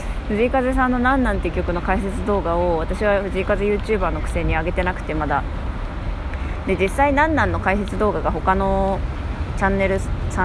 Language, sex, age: Japanese, female, 20-39